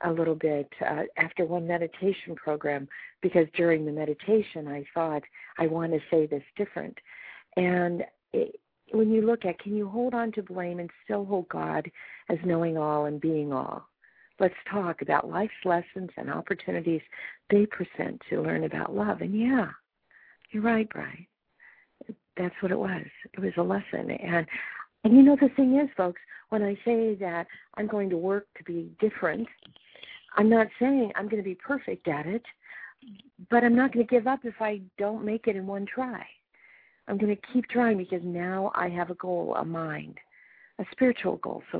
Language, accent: English, American